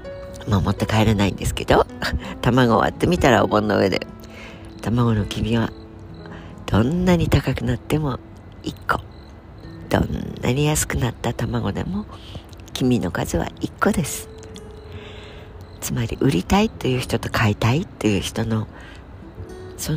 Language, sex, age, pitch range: Japanese, female, 60-79, 95-120 Hz